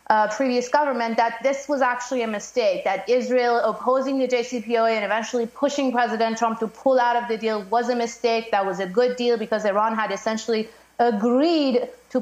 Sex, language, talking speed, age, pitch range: female, English, 190 wpm, 30-49, 215-255 Hz